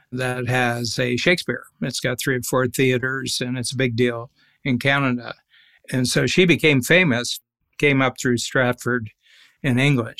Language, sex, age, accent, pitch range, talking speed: English, male, 60-79, American, 125-150 Hz, 165 wpm